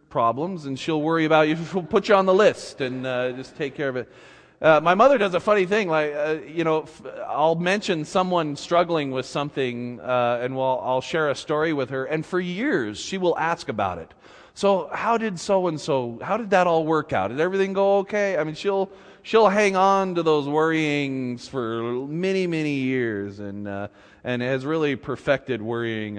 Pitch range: 125-175 Hz